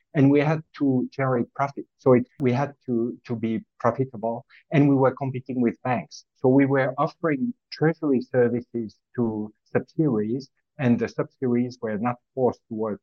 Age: 50-69